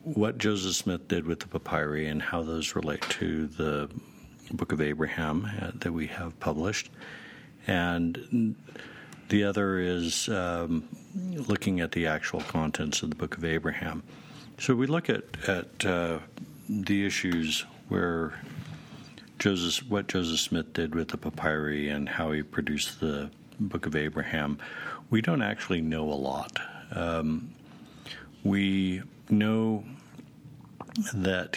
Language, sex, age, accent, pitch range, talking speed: English, male, 60-79, American, 80-100 Hz, 135 wpm